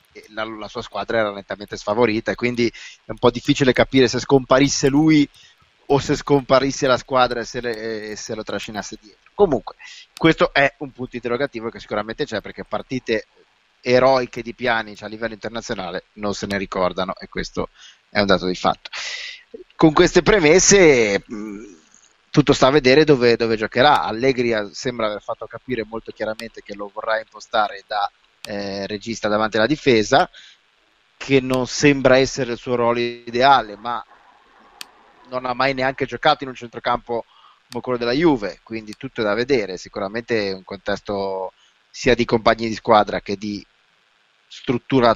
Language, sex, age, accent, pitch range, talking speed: Italian, male, 30-49, native, 105-135 Hz, 160 wpm